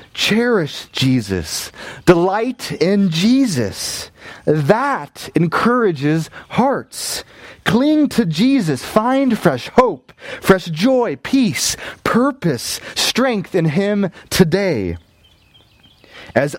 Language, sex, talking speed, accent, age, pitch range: English, male, 85 wpm, American, 30-49, 120-195 Hz